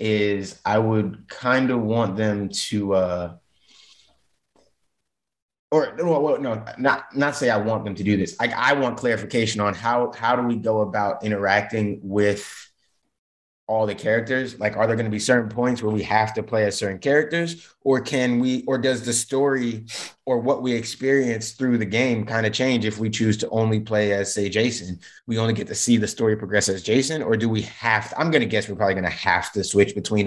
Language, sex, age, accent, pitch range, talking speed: English, male, 20-39, American, 95-115 Hz, 205 wpm